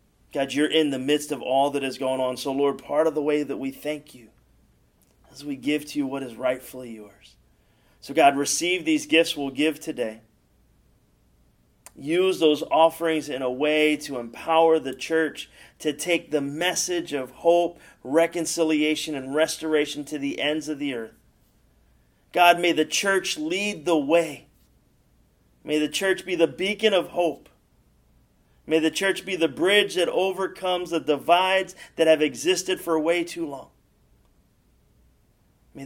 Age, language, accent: 30-49, English, American